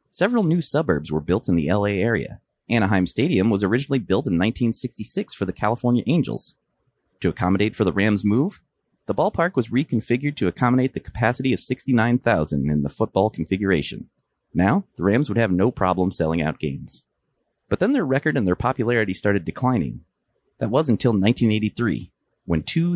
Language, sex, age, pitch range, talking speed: English, male, 30-49, 90-130 Hz, 170 wpm